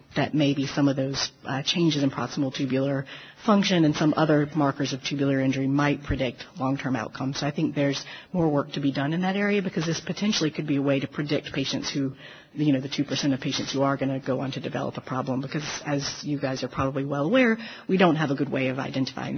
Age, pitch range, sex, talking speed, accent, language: 40-59, 135-160 Hz, female, 240 wpm, American, English